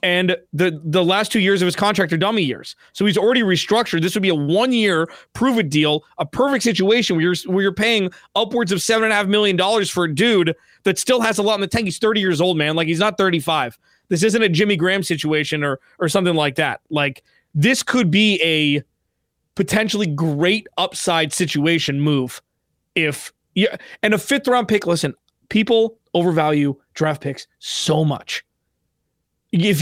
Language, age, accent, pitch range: English, 20-39, American, 165-210 Hz